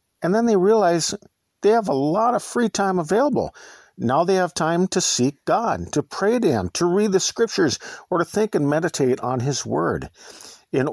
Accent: American